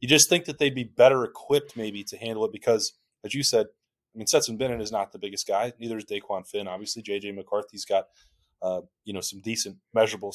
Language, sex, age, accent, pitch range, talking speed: English, male, 20-39, American, 105-130 Hz, 225 wpm